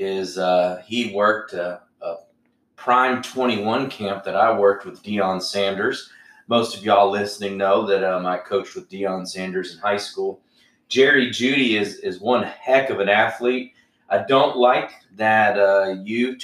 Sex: male